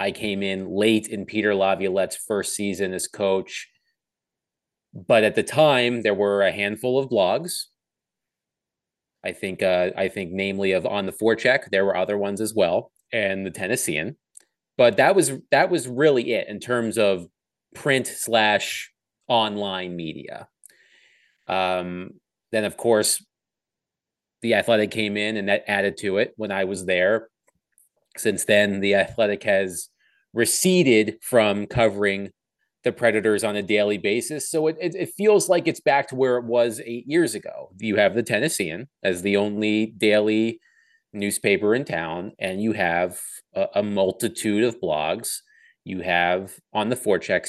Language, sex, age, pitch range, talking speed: English, male, 30-49, 100-125 Hz, 155 wpm